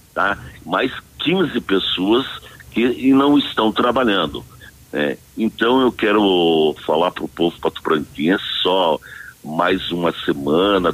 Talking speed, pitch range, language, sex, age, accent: 125 wpm, 85-110 Hz, Portuguese, male, 60-79, Brazilian